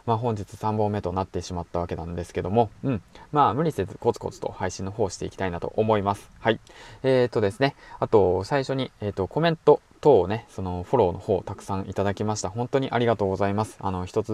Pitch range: 95-120 Hz